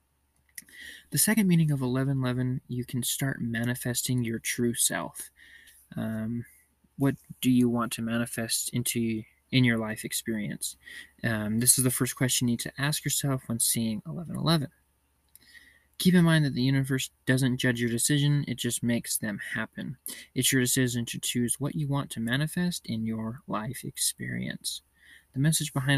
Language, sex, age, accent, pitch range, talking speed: English, male, 20-39, American, 115-140 Hz, 160 wpm